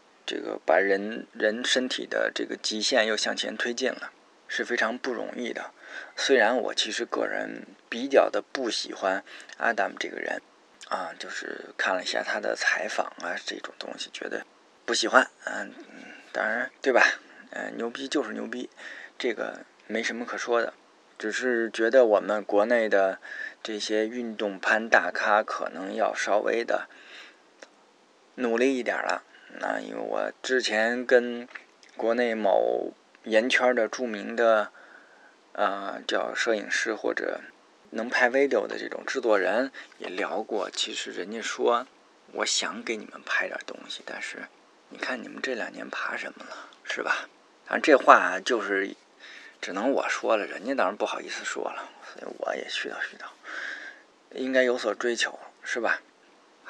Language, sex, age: Chinese, male, 20-39